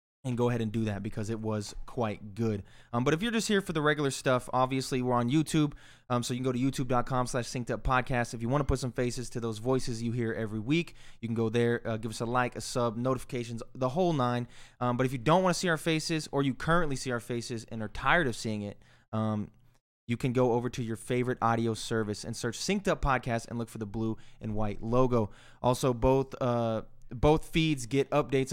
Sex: male